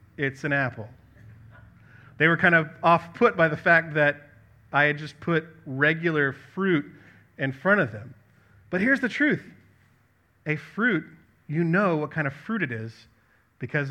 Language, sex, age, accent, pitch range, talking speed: English, male, 30-49, American, 120-150 Hz, 160 wpm